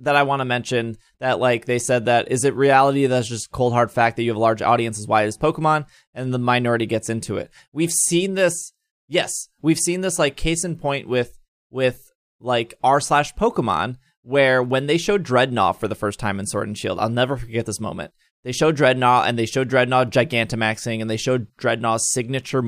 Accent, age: American, 20-39